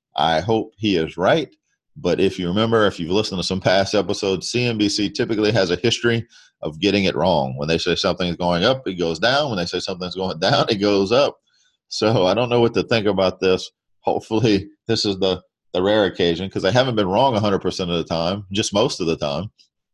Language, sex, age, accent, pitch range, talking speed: English, male, 40-59, American, 90-115 Hz, 220 wpm